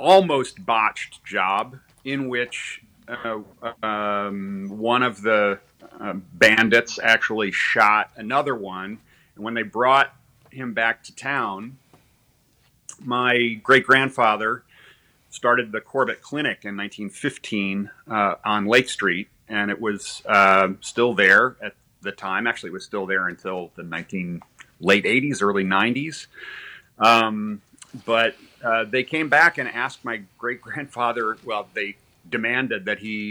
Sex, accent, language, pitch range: male, American, English, 100-130 Hz